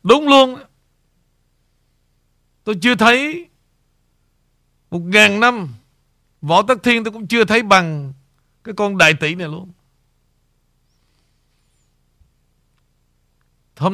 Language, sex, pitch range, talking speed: Vietnamese, male, 140-210 Hz, 100 wpm